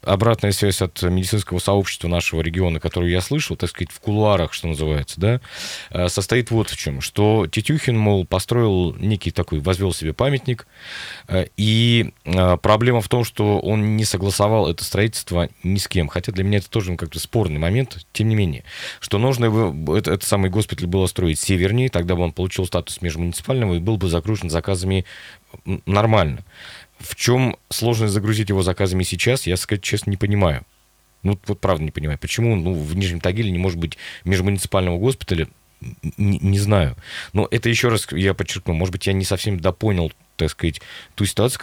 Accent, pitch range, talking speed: native, 85-105 Hz, 180 wpm